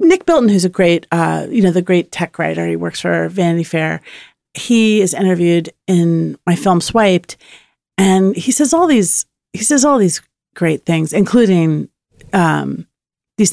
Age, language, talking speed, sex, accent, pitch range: 40-59, English, 170 wpm, female, American, 170-260 Hz